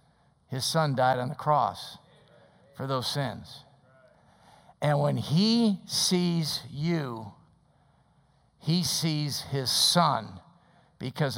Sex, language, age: male, English, 50-69